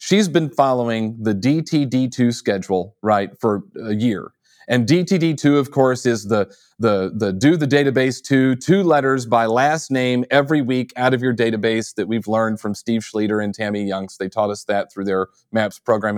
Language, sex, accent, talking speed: English, male, American, 190 wpm